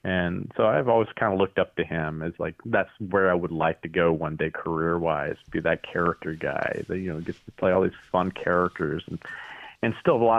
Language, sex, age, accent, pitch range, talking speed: English, male, 30-49, American, 85-115 Hz, 245 wpm